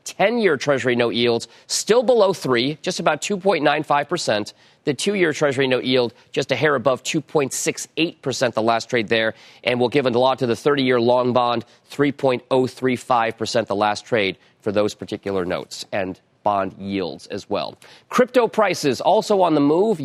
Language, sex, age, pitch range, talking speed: English, male, 40-59, 120-165 Hz, 160 wpm